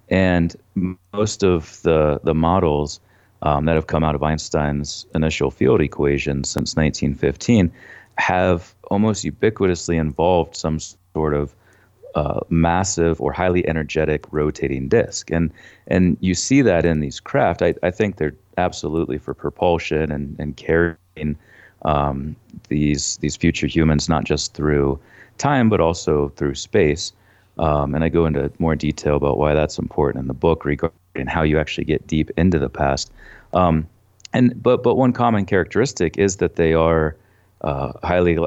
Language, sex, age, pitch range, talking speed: English, male, 30-49, 75-90 Hz, 155 wpm